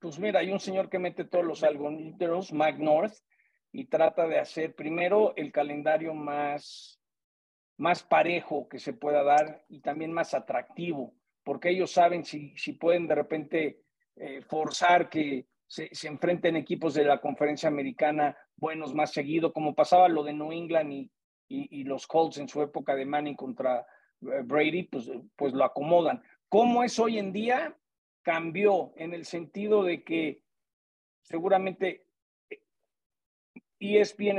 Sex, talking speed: male, 150 wpm